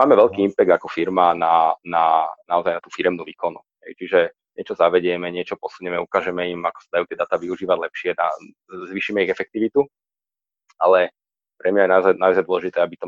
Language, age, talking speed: Slovak, 30-49, 180 wpm